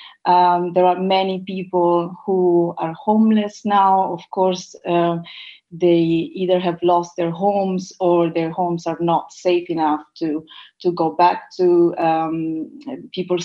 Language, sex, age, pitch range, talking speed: English, female, 30-49, 165-185 Hz, 145 wpm